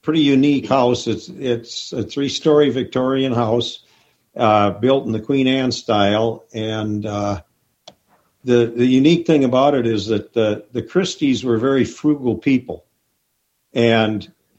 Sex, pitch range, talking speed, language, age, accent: male, 115-135 Hz, 145 wpm, English, 50-69, American